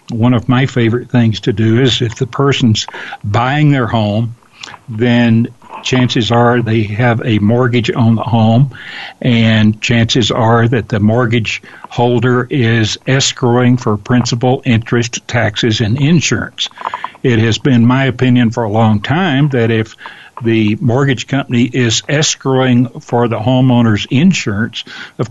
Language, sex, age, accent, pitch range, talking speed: English, male, 60-79, American, 115-130 Hz, 140 wpm